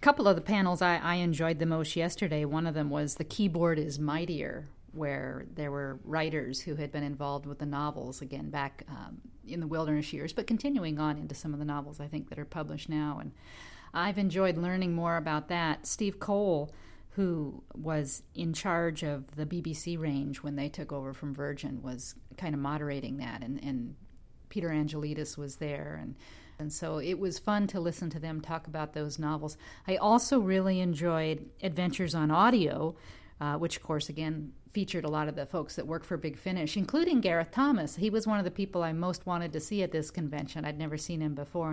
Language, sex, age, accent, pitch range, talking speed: English, female, 40-59, American, 145-175 Hz, 205 wpm